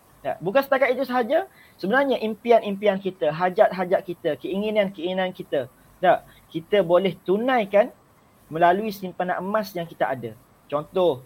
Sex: male